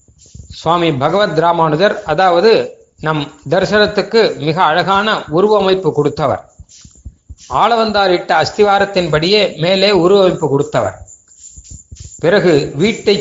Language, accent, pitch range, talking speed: Tamil, native, 135-200 Hz, 80 wpm